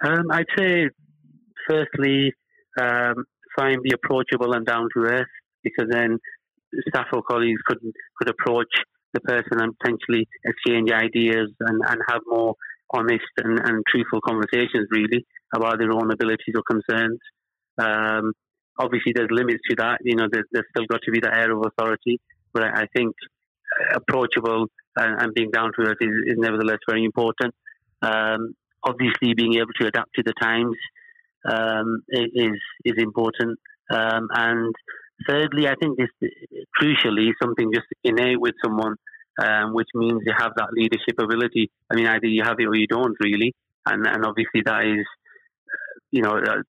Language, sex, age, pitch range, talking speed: English, male, 30-49, 110-120 Hz, 155 wpm